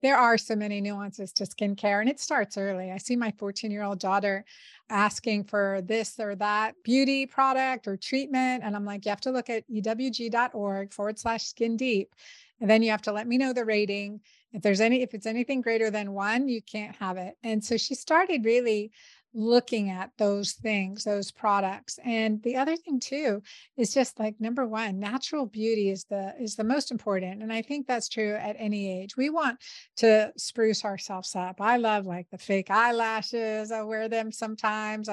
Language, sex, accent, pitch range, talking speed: English, female, American, 205-245 Hz, 200 wpm